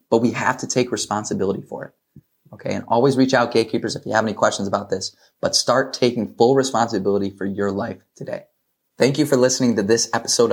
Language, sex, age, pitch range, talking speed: English, male, 20-39, 100-115 Hz, 210 wpm